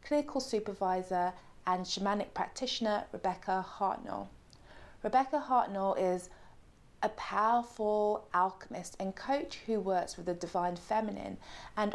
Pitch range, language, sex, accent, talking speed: 180-220 Hz, English, female, British, 110 wpm